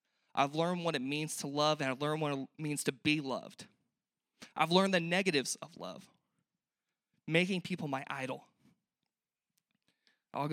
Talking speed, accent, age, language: 155 wpm, American, 20-39, English